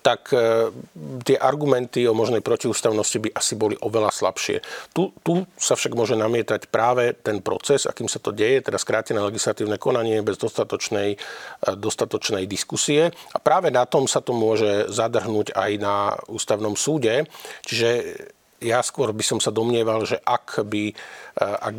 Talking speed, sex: 150 wpm, male